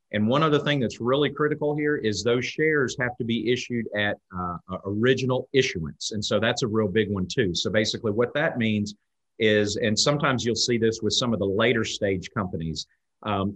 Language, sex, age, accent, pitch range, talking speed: English, male, 40-59, American, 95-130 Hz, 205 wpm